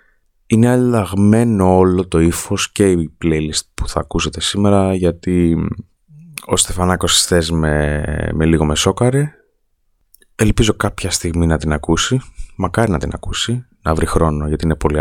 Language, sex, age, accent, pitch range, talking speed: Greek, male, 20-39, native, 80-100 Hz, 145 wpm